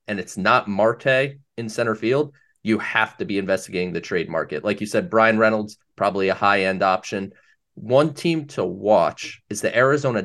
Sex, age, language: male, 30-49, English